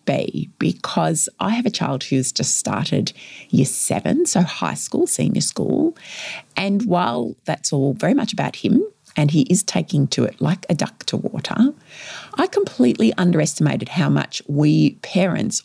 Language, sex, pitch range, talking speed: English, female, 160-245 Hz, 155 wpm